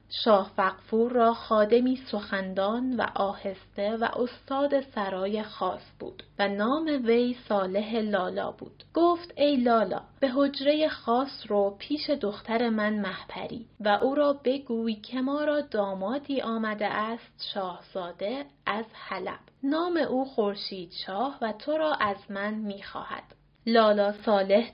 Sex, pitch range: female, 205-265 Hz